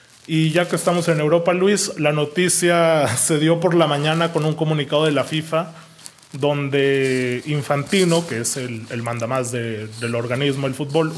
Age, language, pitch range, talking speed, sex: 30-49, Spanish, 130-155 Hz, 165 wpm, male